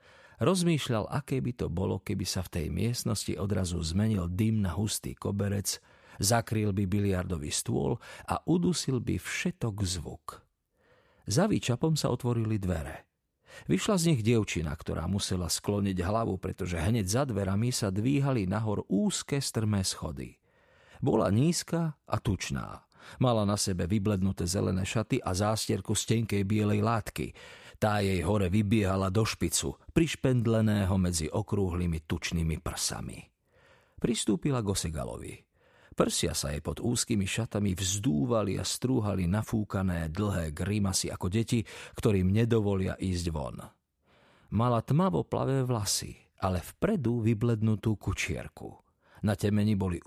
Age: 40-59